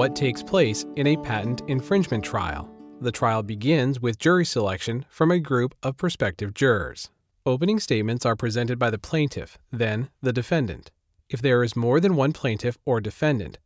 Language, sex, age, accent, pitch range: Chinese, male, 40-59, American, 110-140 Hz